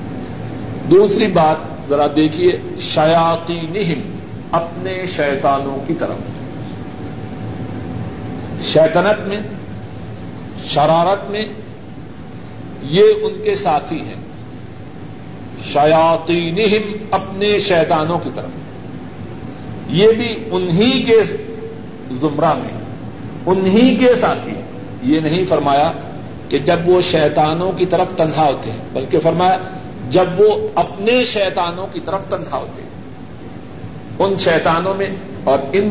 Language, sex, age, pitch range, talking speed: Urdu, male, 50-69, 145-195 Hz, 100 wpm